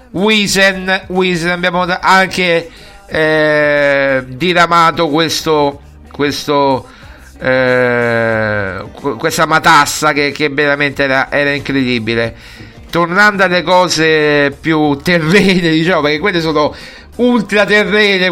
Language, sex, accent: Italian, male, native